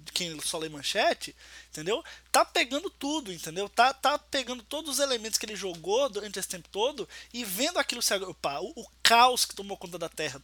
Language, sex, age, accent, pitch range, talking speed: Portuguese, male, 20-39, Brazilian, 190-290 Hz, 200 wpm